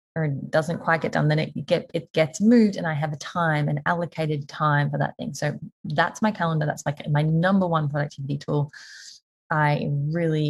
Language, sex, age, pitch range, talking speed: English, female, 20-39, 150-200 Hz, 210 wpm